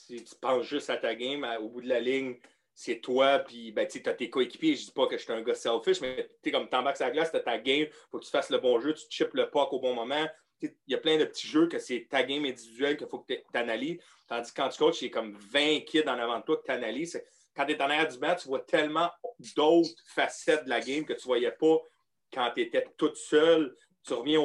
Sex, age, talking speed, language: male, 30-49, 290 wpm, French